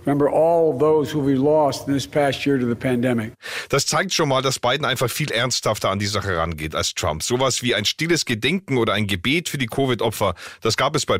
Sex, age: male, 40-59